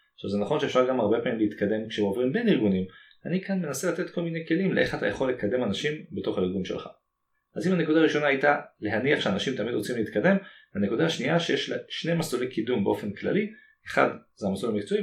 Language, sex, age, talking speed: Hebrew, male, 30-49, 195 wpm